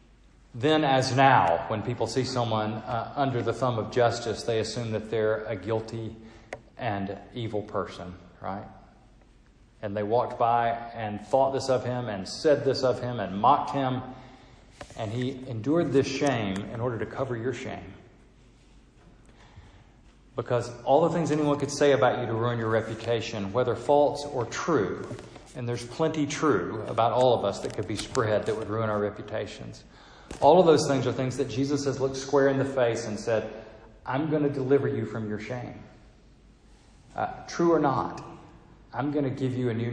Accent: American